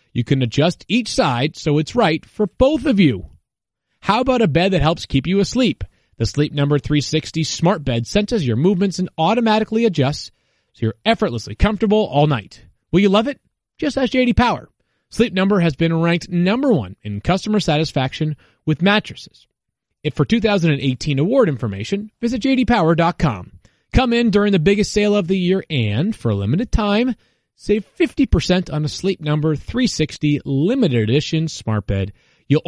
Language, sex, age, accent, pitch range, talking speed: English, male, 30-49, American, 140-220 Hz, 170 wpm